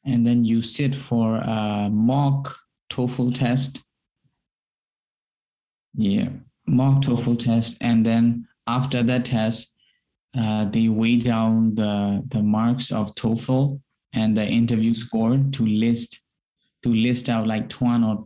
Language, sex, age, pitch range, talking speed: Indonesian, male, 20-39, 110-120 Hz, 125 wpm